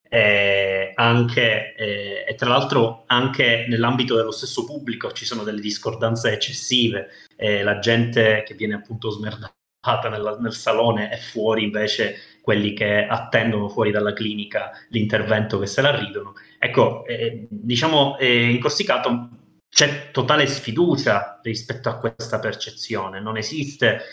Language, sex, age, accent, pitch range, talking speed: Italian, male, 30-49, native, 105-120 Hz, 130 wpm